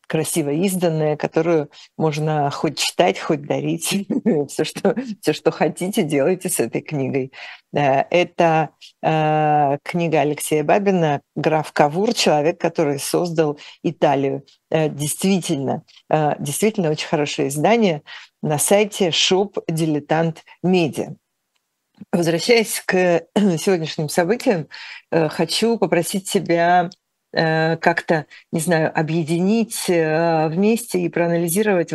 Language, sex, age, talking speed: Russian, female, 50-69, 90 wpm